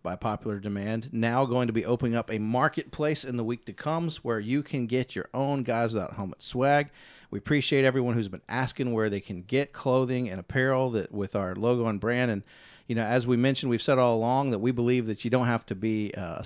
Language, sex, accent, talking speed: English, male, American, 235 wpm